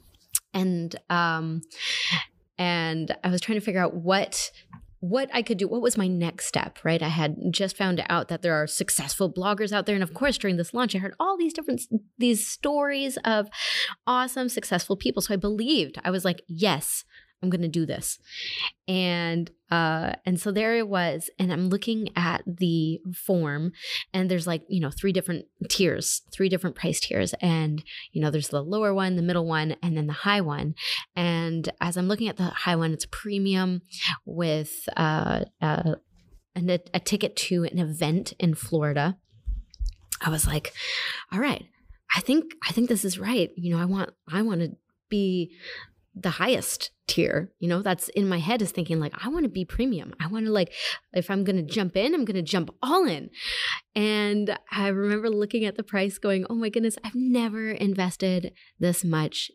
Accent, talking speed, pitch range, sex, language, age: American, 190 wpm, 165-210 Hz, female, English, 20-39